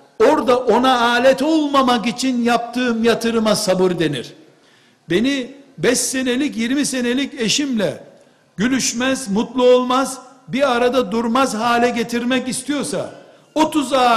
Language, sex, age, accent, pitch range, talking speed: Turkish, male, 60-79, native, 225-265 Hz, 105 wpm